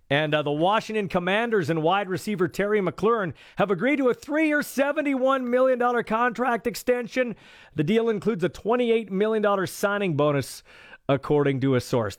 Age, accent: 40-59, American